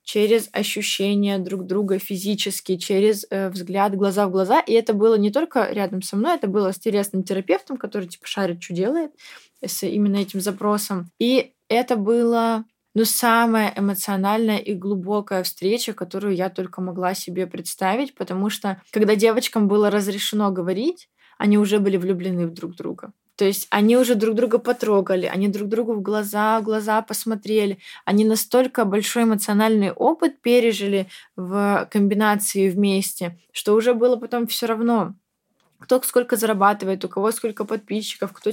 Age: 20-39